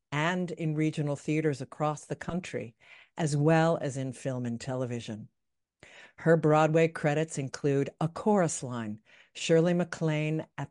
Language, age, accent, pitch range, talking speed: English, 50-69, American, 145-180 Hz, 135 wpm